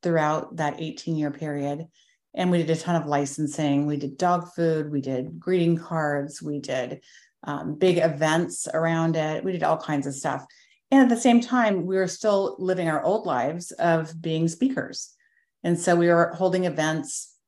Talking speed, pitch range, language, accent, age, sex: 180 wpm, 150-180 Hz, English, American, 40-59, female